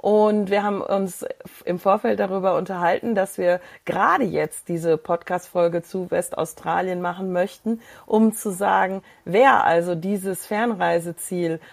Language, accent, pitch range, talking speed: German, German, 175-210 Hz, 130 wpm